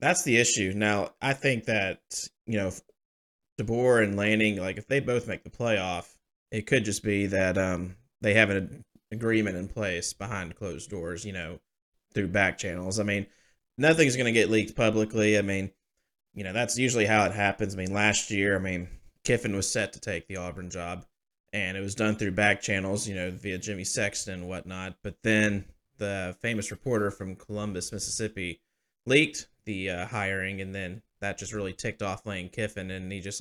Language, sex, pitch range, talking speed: English, male, 95-110 Hz, 195 wpm